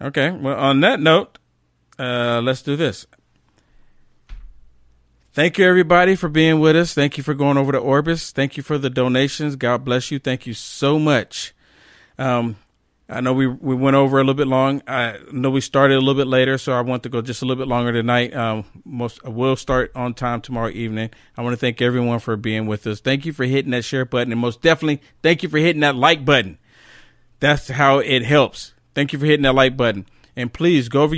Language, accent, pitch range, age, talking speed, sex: English, American, 120-155 Hz, 40-59, 220 wpm, male